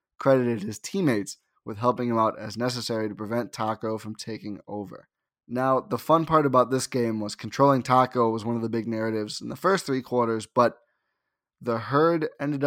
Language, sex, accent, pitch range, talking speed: English, male, American, 115-140 Hz, 190 wpm